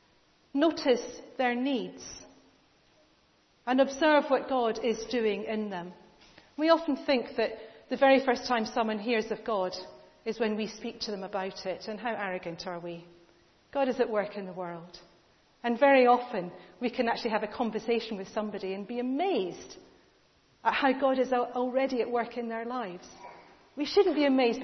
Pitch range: 215-280 Hz